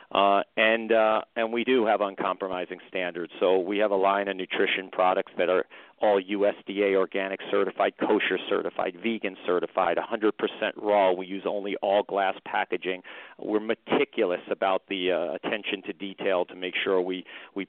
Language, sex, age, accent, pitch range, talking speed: English, male, 40-59, American, 95-105 Hz, 165 wpm